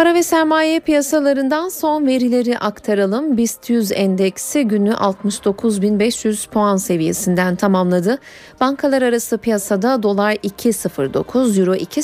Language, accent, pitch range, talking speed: Turkish, native, 195-265 Hz, 105 wpm